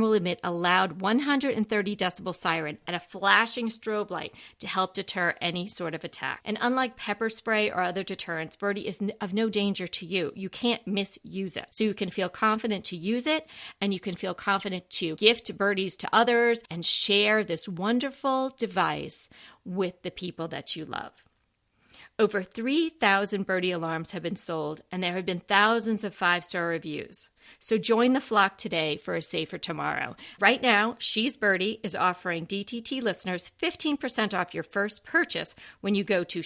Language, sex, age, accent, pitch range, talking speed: English, female, 40-59, American, 180-225 Hz, 180 wpm